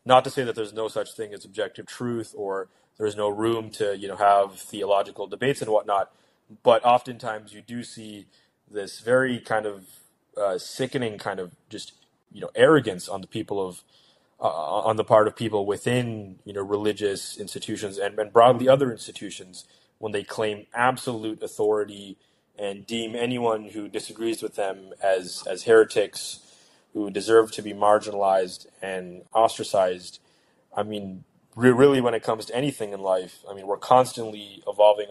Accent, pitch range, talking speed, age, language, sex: American, 100-115 Hz, 170 wpm, 20-39, English, male